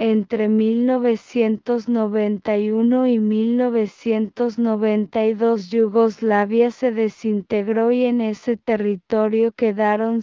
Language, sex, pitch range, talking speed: English, female, 210-235 Hz, 70 wpm